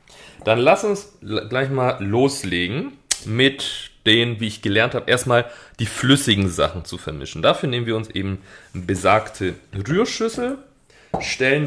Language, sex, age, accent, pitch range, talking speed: German, male, 30-49, German, 100-140 Hz, 135 wpm